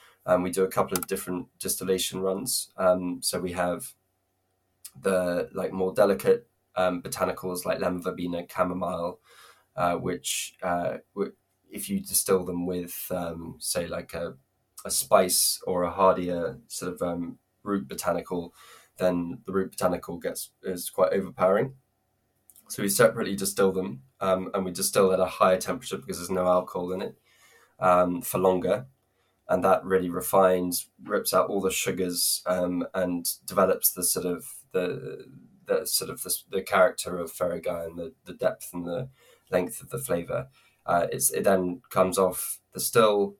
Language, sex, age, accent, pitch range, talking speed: English, male, 10-29, British, 90-95 Hz, 160 wpm